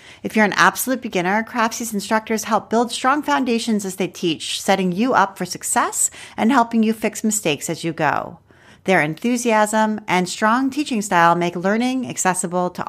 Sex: female